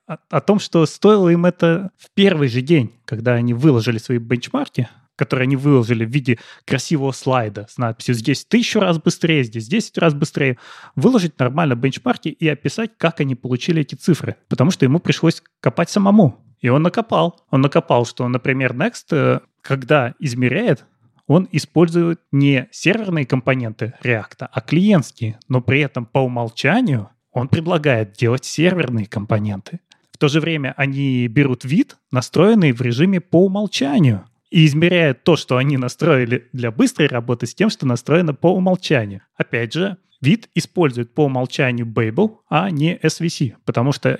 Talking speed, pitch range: 155 wpm, 125-170 Hz